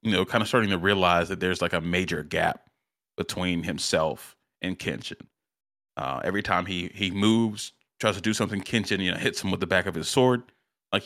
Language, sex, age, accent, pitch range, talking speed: English, male, 30-49, American, 95-110 Hz, 210 wpm